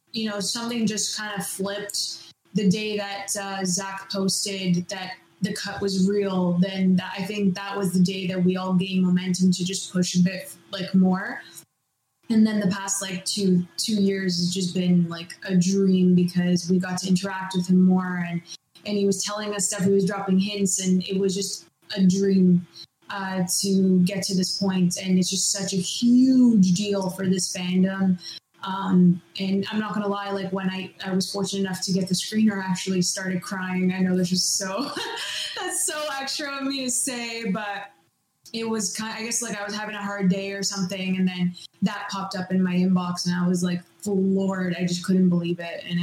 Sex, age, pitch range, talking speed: female, 20-39, 180-200 Hz, 210 wpm